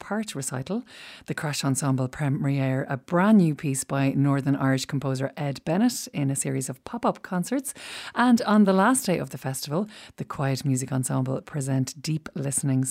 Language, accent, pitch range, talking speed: English, Irish, 135-190 Hz, 170 wpm